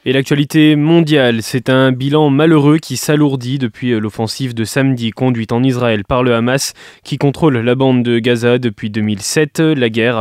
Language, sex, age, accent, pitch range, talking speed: French, male, 20-39, French, 125-150 Hz, 170 wpm